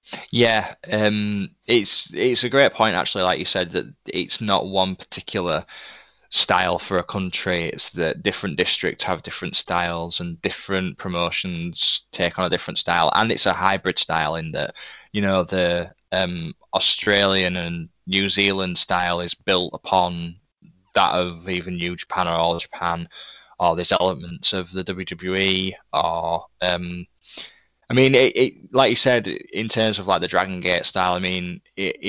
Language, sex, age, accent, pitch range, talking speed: English, male, 20-39, British, 90-100 Hz, 165 wpm